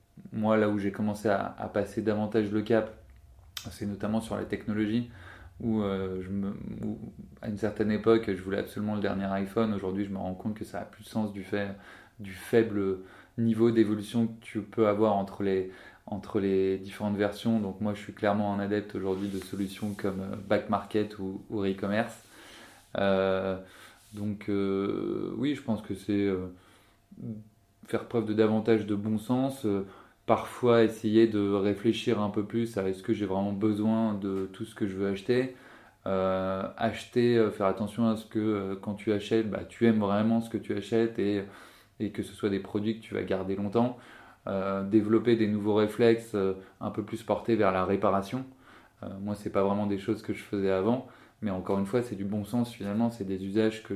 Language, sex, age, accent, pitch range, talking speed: French, male, 20-39, French, 100-110 Hz, 200 wpm